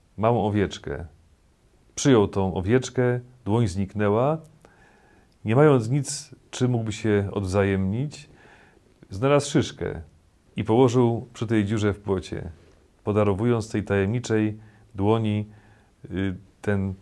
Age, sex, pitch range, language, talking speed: 40-59, male, 95-125 Hz, Polish, 100 wpm